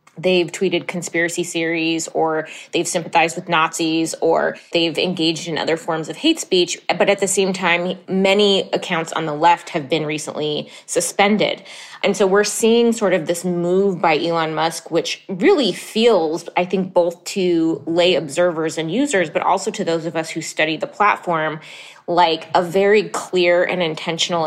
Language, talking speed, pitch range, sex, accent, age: English, 170 wpm, 165-195 Hz, female, American, 20-39